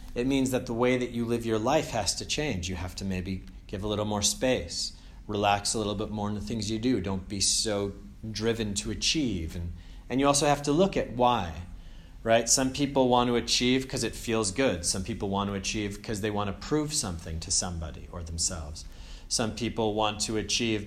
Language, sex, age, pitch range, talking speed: English, male, 30-49, 95-115 Hz, 220 wpm